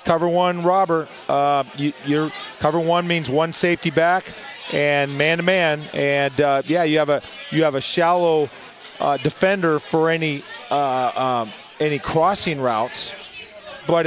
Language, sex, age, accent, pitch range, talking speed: English, male, 30-49, American, 140-170 Hz, 150 wpm